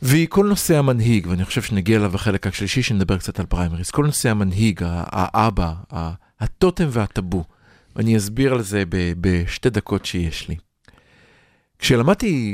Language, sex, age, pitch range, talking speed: Hebrew, male, 50-69, 105-145 Hz, 140 wpm